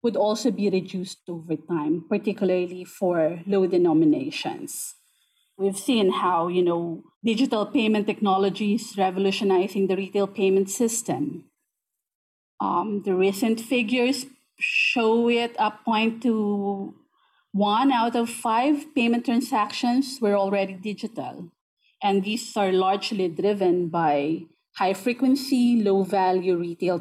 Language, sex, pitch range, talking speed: English, female, 185-245 Hz, 120 wpm